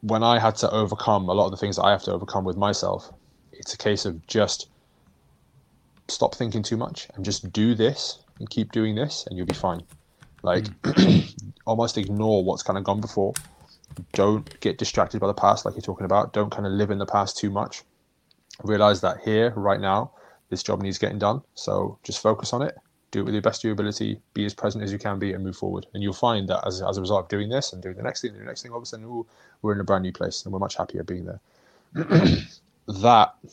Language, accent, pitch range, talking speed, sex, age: English, British, 95-110 Hz, 240 wpm, male, 20-39